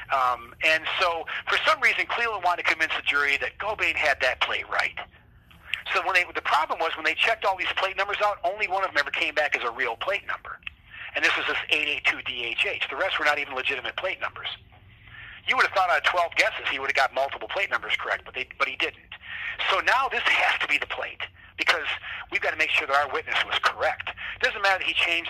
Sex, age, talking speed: male, 40-59, 245 wpm